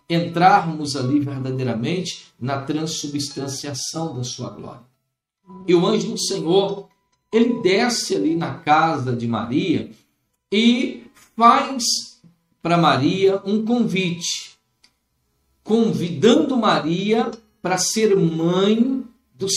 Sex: male